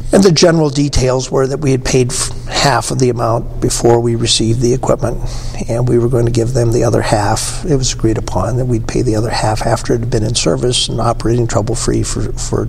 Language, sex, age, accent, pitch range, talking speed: English, male, 60-79, American, 115-140 Hz, 230 wpm